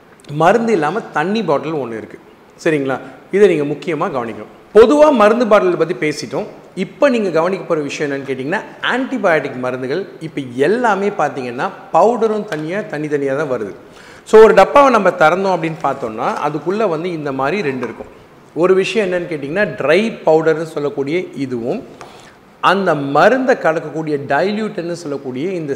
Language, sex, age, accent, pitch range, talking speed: Tamil, male, 40-59, native, 145-210 Hz, 140 wpm